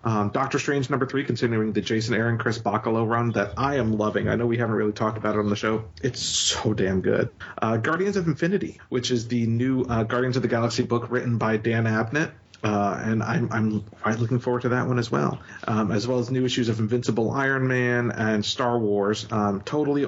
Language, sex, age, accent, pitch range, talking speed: English, male, 40-59, American, 110-125 Hz, 225 wpm